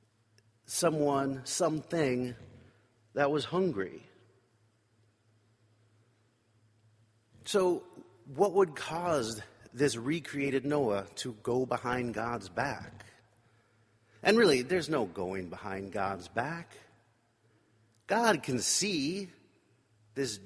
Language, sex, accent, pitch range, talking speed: English, male, American, 110-140 Hz, 85 wpm